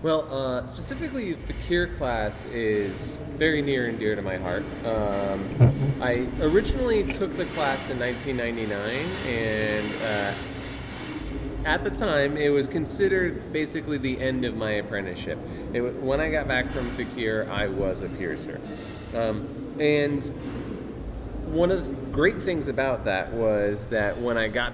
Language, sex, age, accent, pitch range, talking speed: English, male, 30-49, American, 105-130 Hz, 145 wpm